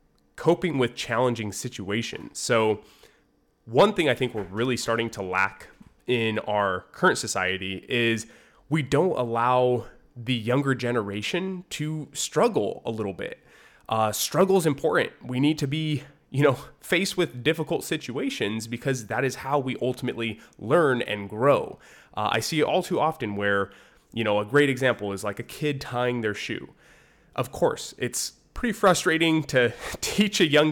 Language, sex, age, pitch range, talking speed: English, male, 20-39, 110-150 Hz, 160 wpm